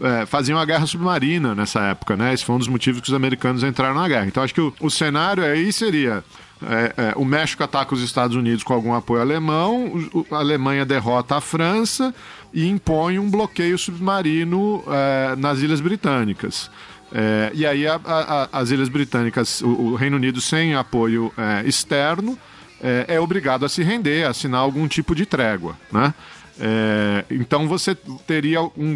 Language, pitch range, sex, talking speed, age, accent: Portuguese, 115-155 Hz, male, 185 wpm, 40-59, Brazilian